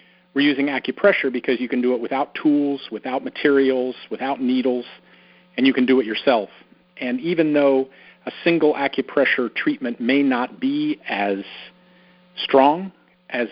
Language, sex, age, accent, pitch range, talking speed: English, male, 40-59, American, 125-180 Hz, 145 wpm